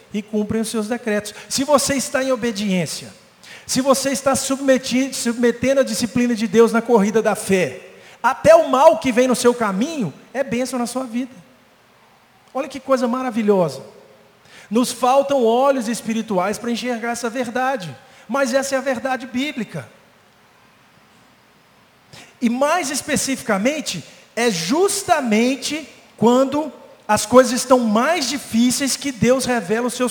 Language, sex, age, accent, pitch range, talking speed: Portuguese, male, 50-69, Brazilian, 210-260 Hz, 140 wpm